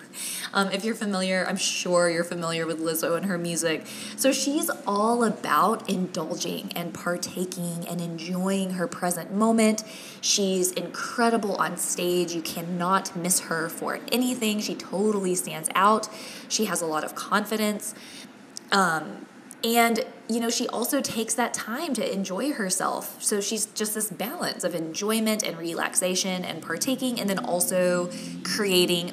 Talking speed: 150 wpm